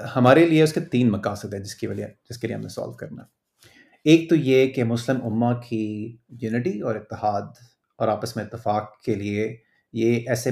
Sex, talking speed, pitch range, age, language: male, 195 wpm, 110-135 Hz, 30-49, Urdu